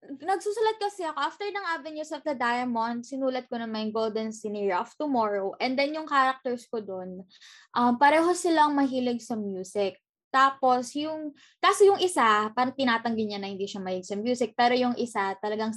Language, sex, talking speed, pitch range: Filipino, female, 175 wpm, 215-285 Hz